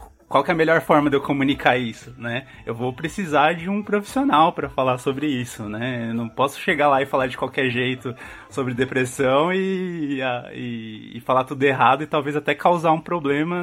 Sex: male